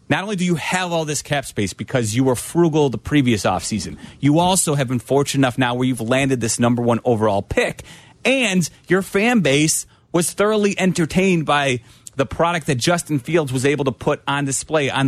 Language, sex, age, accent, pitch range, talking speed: English, male, 30-49, American, 125-160 Hz, 205 wpm